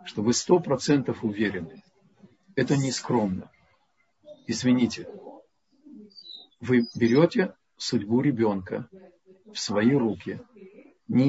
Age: 50-69